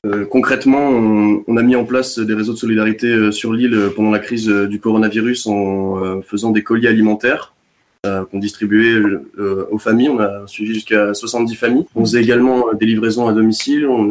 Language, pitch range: French, 105-120 Hz